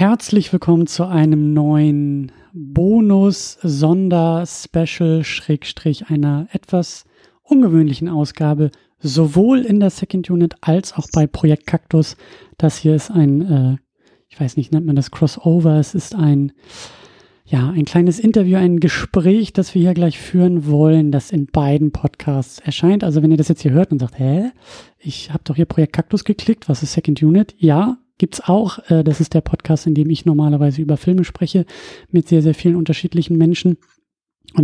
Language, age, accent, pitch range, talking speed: German, 30-49, German, 150-180 Hz, 165 wpm